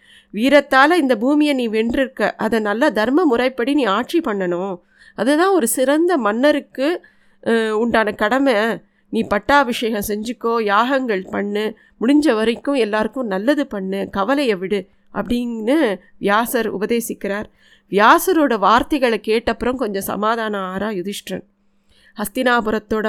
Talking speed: 105 wpm